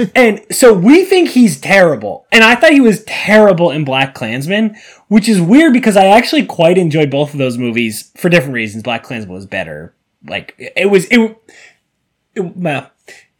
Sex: male